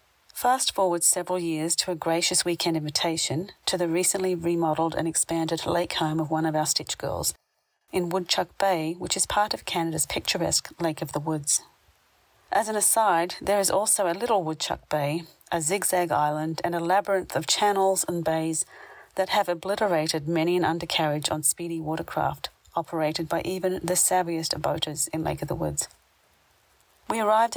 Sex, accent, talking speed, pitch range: female, Australian, 170 wpm, 160-180 Hz